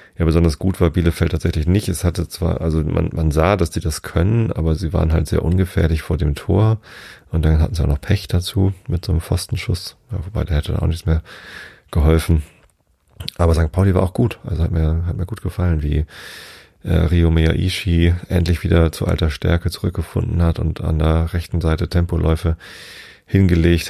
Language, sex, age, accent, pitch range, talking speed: German, male, 30-49, German, 80-90 Hz, 195 wpm